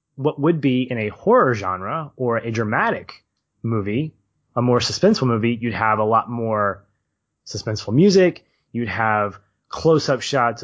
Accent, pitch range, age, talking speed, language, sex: American, 110-150 Hz, 20-39, 145 wpm, English, male